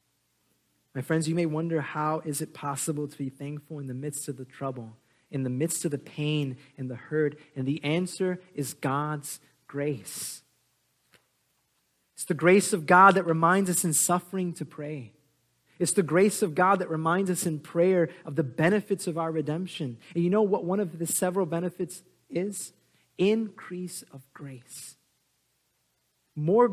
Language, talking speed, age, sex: English, 170 wpm, 30-49, male